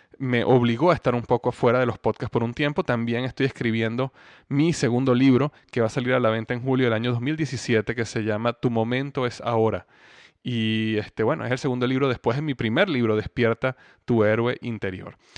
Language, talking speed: Spanish, 210 wpm